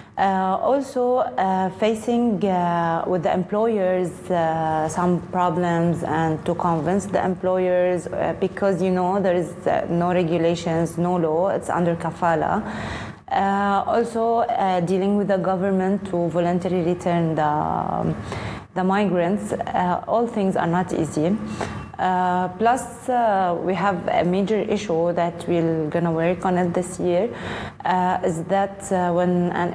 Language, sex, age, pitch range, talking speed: English, female, 20-39, 175-195 Hz, 145 wpm